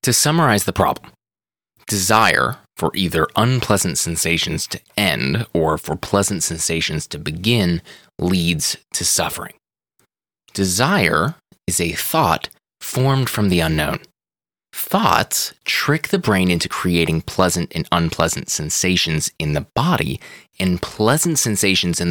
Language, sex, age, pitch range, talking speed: English, male, 20-39, 85-110 Hz, 120 wpm